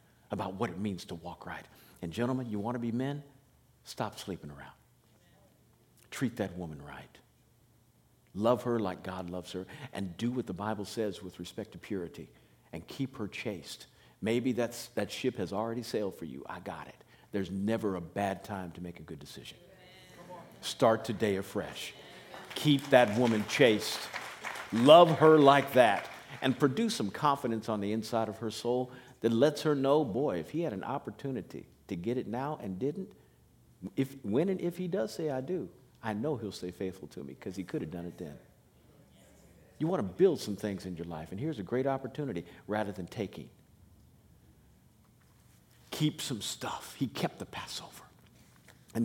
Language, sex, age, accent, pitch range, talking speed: English, male, 50-69, American, 95-135 Hz, 180 wpm